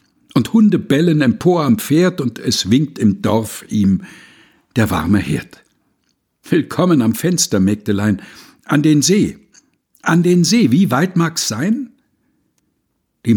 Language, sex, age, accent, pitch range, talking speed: German, male, 60-79, German, 115-190 Hz, 135 wpm